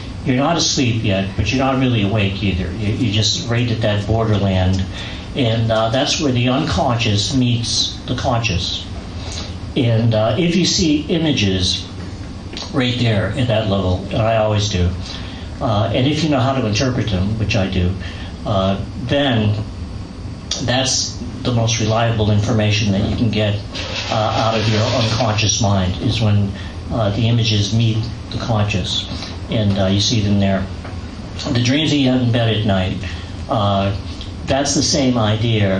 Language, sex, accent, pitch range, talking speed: English, male, American, 95-120 Hz, 165 wpm